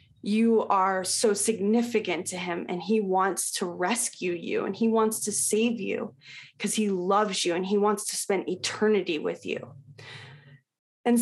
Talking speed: 165 wpm